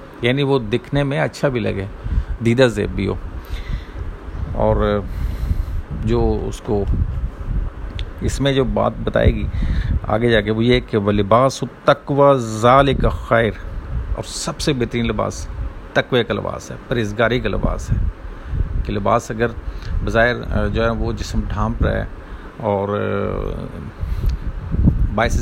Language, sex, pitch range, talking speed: Urdu, male, 90-115 Hz, 135 wpm